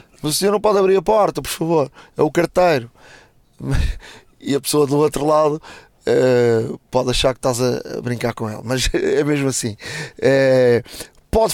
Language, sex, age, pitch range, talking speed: Portuguese, male, 20-39, 125-160 Hz, 165 wpm